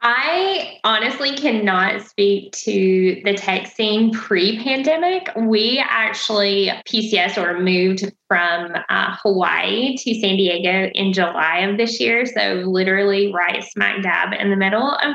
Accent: American